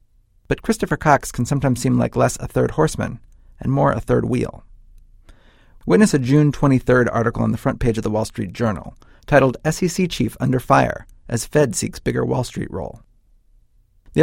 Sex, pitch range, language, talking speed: male, 110-140 Hz, English, 180 wpm